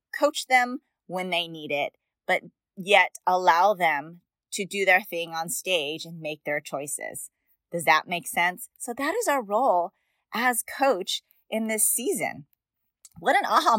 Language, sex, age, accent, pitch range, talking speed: English, female, 30-49, American, 170-235 Hz, 160 wpm